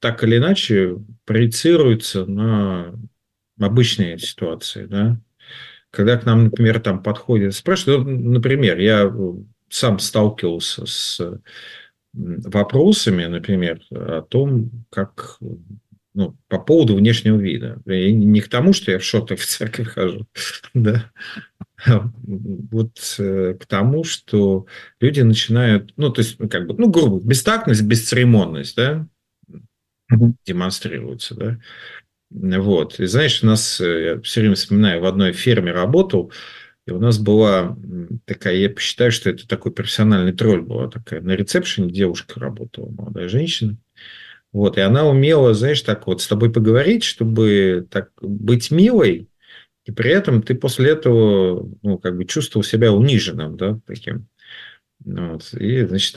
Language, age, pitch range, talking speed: Russian, 50-69, 100-120 Hz, 130 wpm